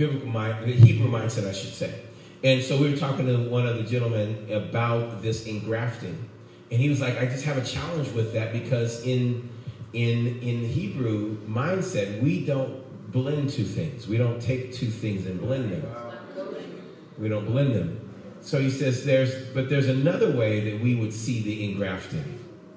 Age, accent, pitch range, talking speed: 40-59, American, 115-140 Hz, 175 wpm